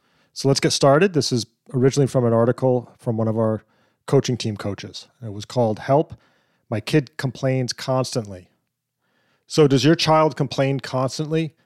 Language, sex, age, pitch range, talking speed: English, male, 40-59, 120-145 Hz, 160 wpm